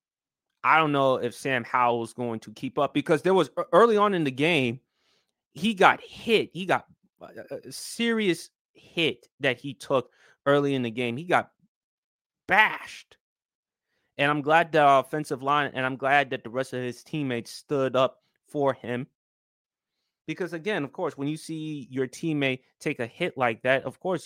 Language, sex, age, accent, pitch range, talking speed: English, male, 20-39, American, 130-170 Hz, 180 wpm